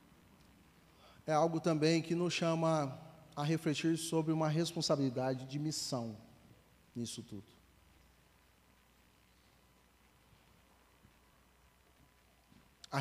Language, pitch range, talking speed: Portuguese, 120-165 Hz, 75 wpm